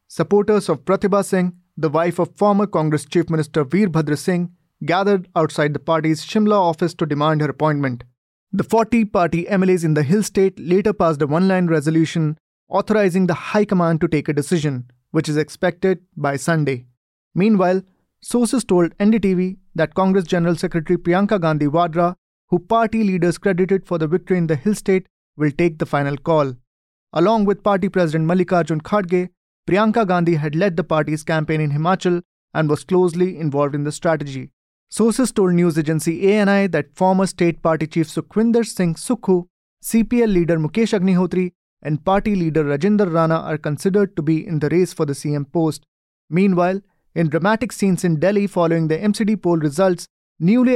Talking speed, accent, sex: 170 wpm, Indian, male